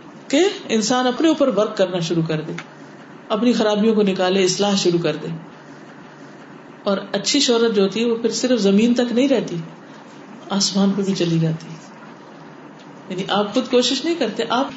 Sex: female